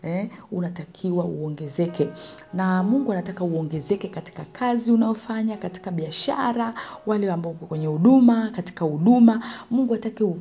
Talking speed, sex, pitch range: 120 wpm, female, 160-215 Hz